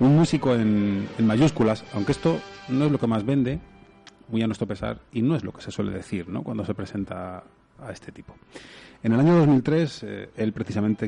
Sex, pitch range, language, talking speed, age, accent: male, 90-110 Hz, Spanish, 210 wpm, 30-49, Spanish